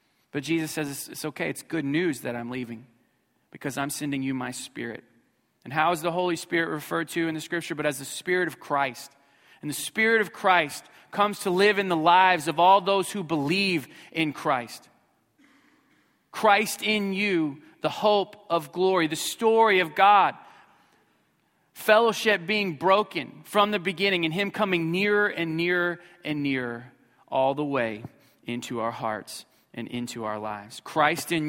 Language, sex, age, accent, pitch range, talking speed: English, male, 40-59, American, 150-205 Hz, 170 wpm